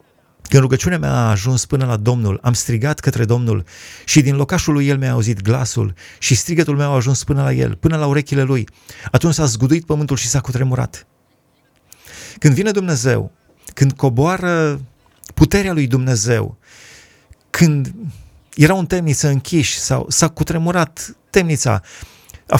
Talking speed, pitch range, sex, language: 150 wpm, 115-150 Hz, male, Romanian